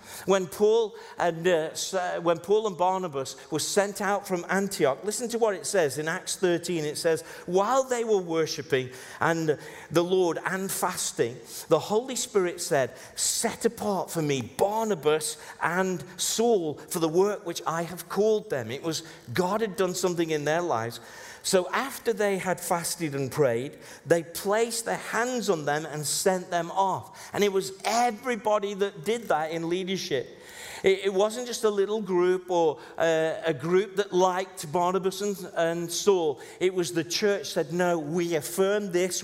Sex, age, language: male, 50-69, English